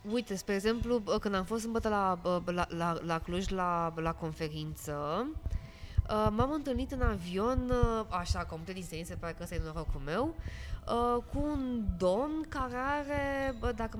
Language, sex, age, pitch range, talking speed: Romanian, female, 20-39, 180-240 Hz, 150 wpm